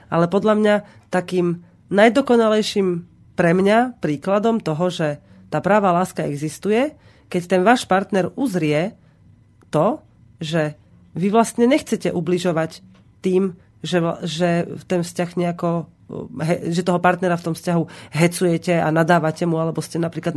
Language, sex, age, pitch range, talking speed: Slovak, female, 30-49, 165-205 Hz, 140 wpm